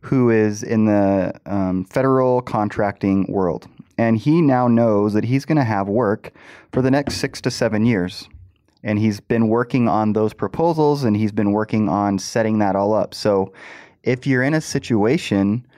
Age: 30-49